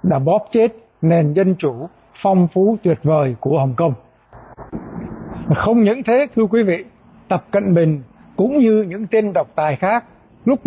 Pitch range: 165-215 Hz